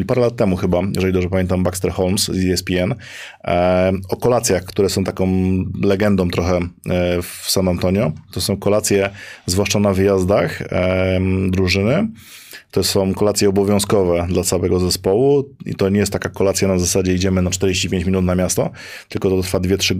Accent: native